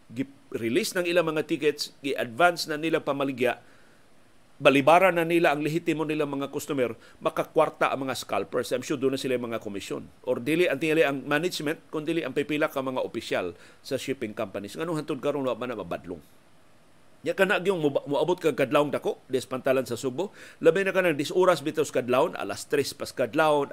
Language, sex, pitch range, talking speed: Filipino, male, 140-175 Hz, 175 wpm